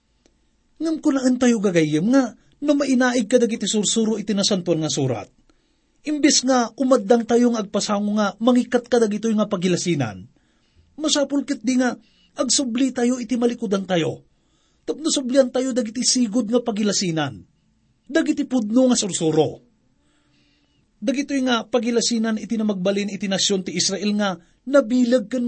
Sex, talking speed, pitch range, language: male, 130 wpm, 205-260 Hz, English